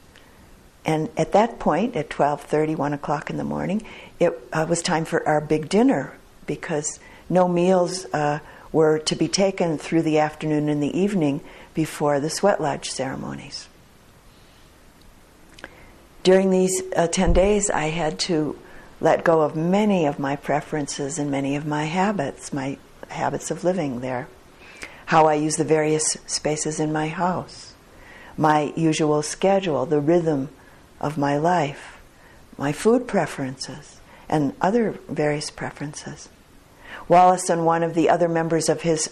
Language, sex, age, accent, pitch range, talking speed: English, female, 50-69, American, 150-180 Hz, 150 wpm